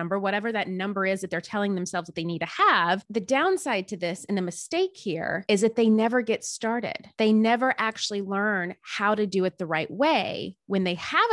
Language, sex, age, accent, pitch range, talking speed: English, female, 20-39, American, 185-240 Hz, 220 wpm